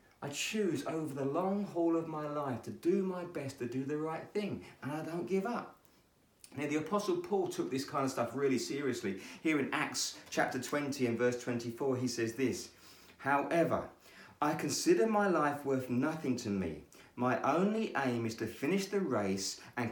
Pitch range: 105-170 Hz